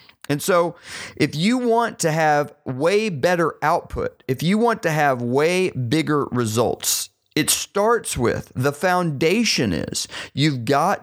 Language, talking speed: English, 140 wpm